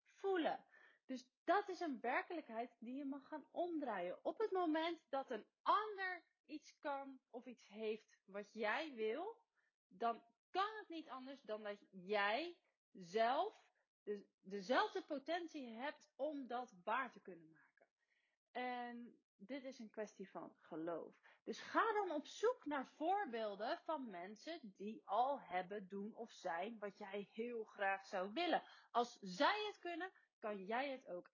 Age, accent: 30-49, Dutch